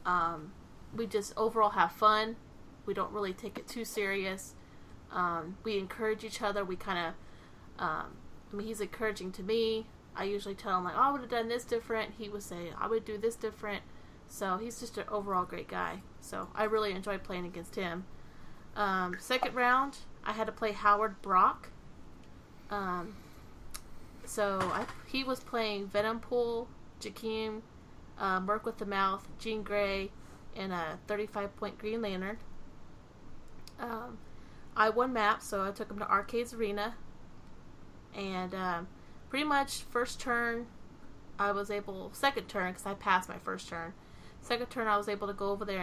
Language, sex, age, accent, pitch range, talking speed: English, female, 30-49, American, 190-220 Hz, 165 wpm